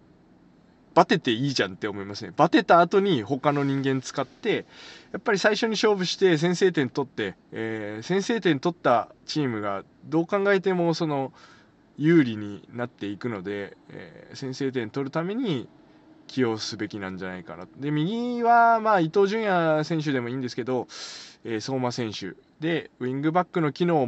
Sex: male